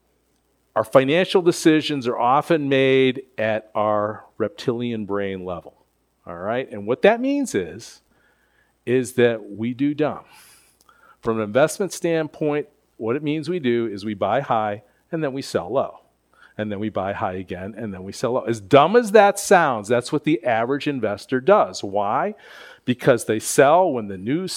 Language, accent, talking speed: English, American, 170 wpm